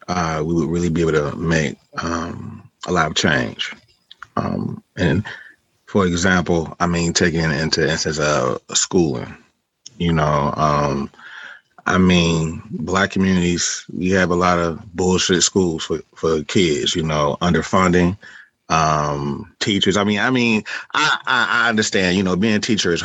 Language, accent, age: English, American, 30-49